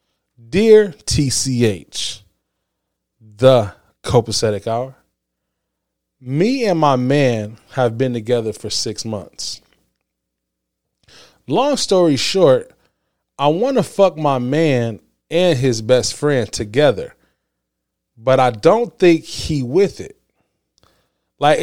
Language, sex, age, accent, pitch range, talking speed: English, male, 20-39, American, 110-165 Hz, 105 wpm